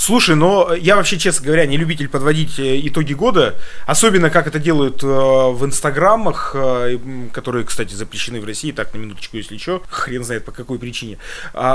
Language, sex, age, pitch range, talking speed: Russian, male, 20-39, 135-180 Hz, 180 wpm